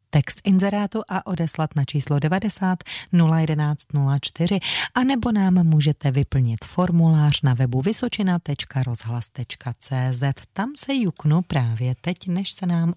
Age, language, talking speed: 30-49, Czech, 120 wpm